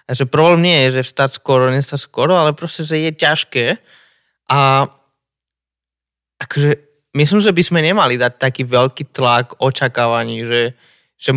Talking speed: 150 wpm